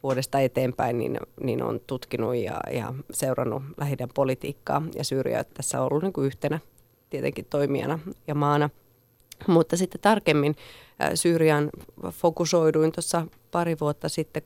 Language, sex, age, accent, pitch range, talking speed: Finnish, female, 30-49, native, 140-160 Hz, 135 wpm